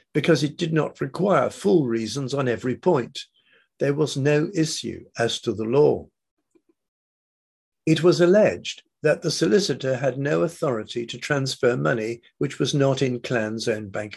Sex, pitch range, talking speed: male, 115-160 Hz, 155 wpm